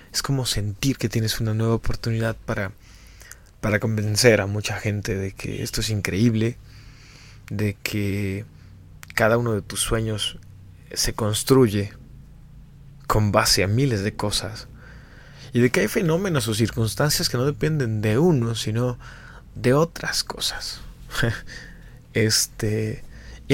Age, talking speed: 20-39, 130 wpm